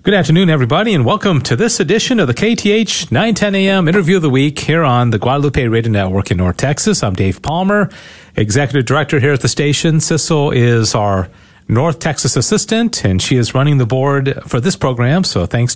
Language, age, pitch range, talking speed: English, 40-59, 120-165 Hz, 200 wpm